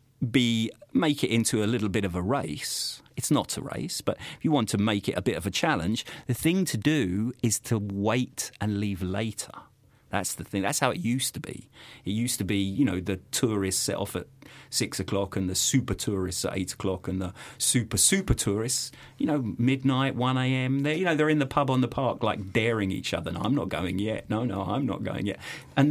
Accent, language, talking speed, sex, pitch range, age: British, English, 235 wpm, male, 100-135 Hz, 40-59